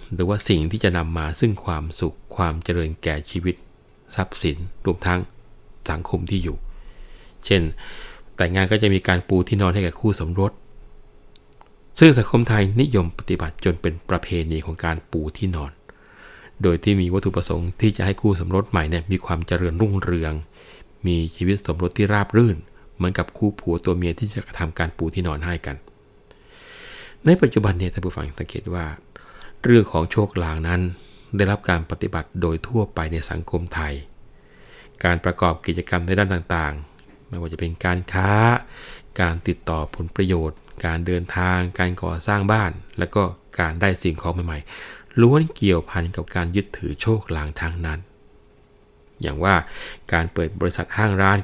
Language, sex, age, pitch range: Thai, male, 20-39, 85-100 Hz